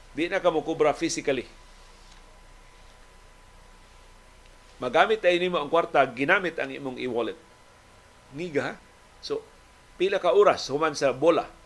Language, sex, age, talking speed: Filipino, male, 40-59, 125 wpm